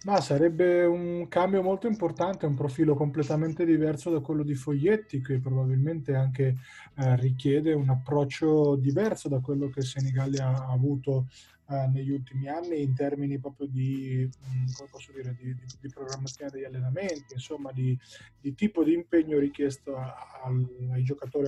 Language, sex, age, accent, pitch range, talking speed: Italian, male, 20-39, native, 135-155 Hz, 155 wpm